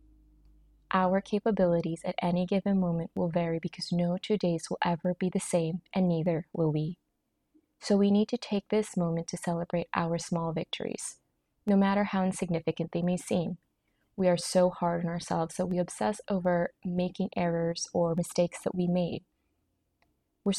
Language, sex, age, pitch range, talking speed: English, female, 20-39, 170-185 Hz, 170 wpm